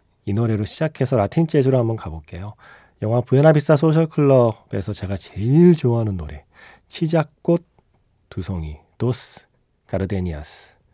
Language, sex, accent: Korean, male, native